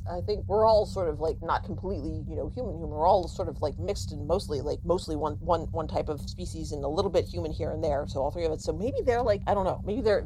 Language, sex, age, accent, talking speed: English, female, 40-59, American, 290 wpm